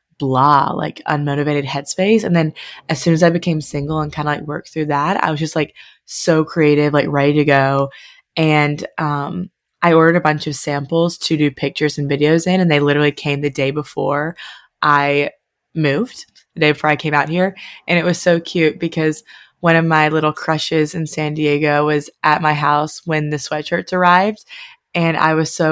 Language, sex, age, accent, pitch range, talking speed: English, female, 20-39, American, 145-175 Hz, 200 wpm